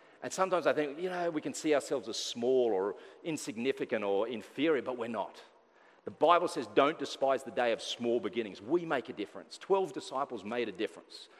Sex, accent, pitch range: male, Australian, 125-210 Hz